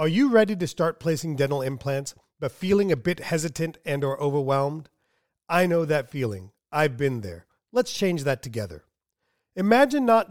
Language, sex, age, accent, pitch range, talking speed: English, male, 40-59, American, 130-185 Hz, 170 wpm